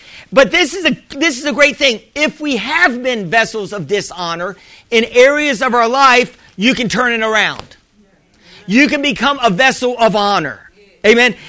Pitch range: 215-270 Hz